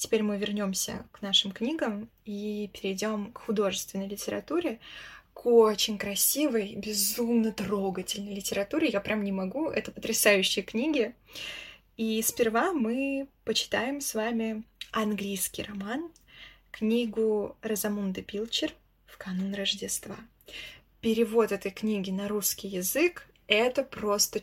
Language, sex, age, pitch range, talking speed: Russian, female, 20-39, 200-230 Hz, 115 wpm